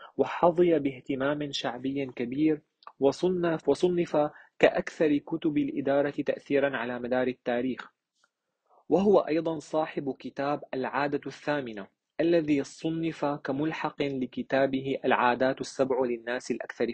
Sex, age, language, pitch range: male, 30-49, Arabic, 130-150 Hz